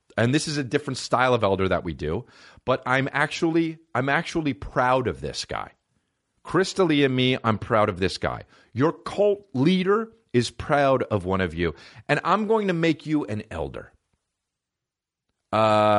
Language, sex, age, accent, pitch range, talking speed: English, male, 40-59, American, 95-135 Hz, 175 wpm